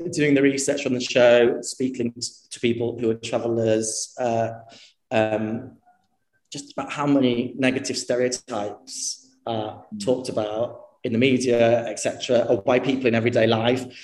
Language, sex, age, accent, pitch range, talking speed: English, male, 30-49, British, 115-130 Hz, 145 wpm